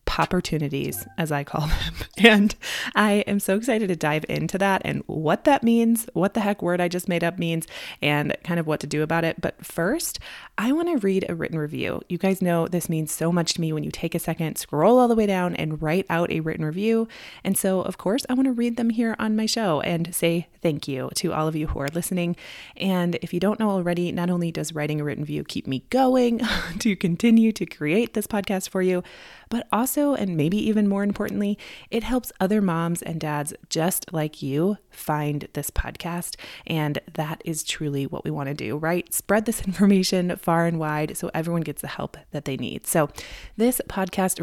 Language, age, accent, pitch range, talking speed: English, 20-39, American, 160-210 Hz, 220 wpm